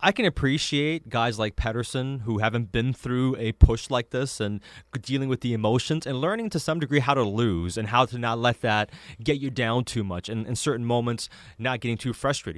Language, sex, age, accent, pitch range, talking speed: English, male, 20-39, American, 105-135 Hz, 220 wpm